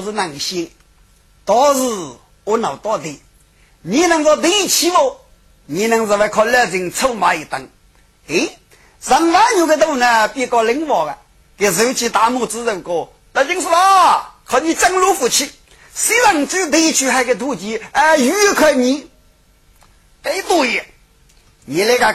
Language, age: Chinese, 40-59